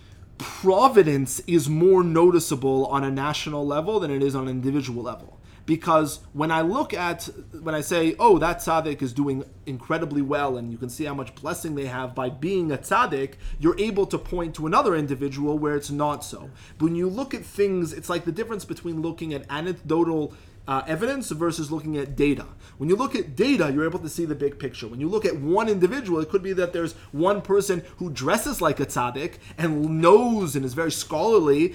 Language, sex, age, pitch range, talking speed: English, male, 30-49, 135-170 Hz, 210 wpm